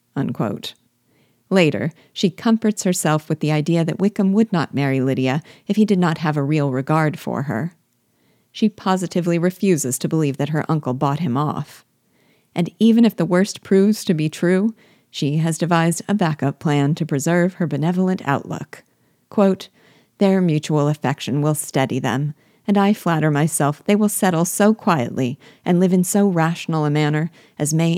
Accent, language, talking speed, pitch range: American, English, 170 wpm, 150-190 Hz